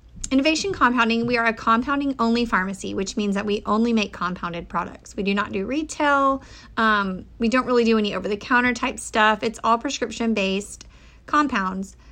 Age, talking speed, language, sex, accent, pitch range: 30-49, 170 wpm, English, female, American, 190-230 Hz